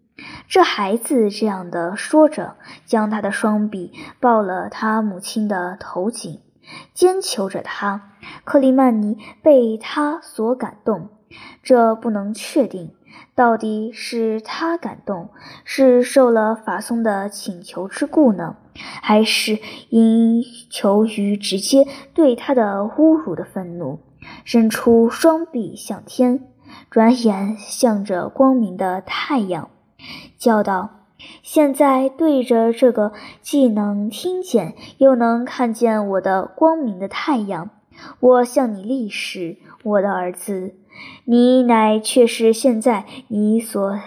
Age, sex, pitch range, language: 10-29, male, 205-260 Hz, Chinese